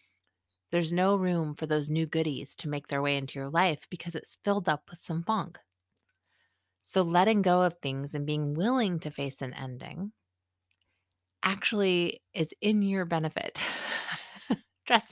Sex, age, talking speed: female, 30-49, 155 wpm